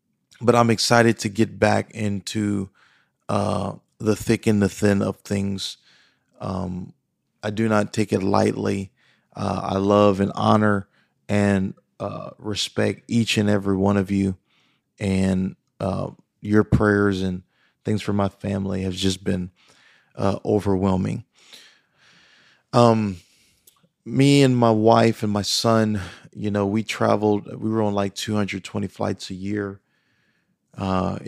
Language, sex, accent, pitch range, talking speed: English, male, American, 95-110 Hz, 135 wpm